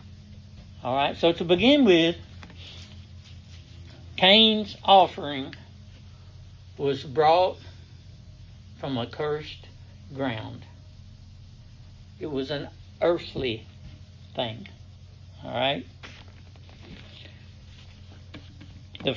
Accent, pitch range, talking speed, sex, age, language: American, 100-130 Hz, 65 wpm, male, 60-79, English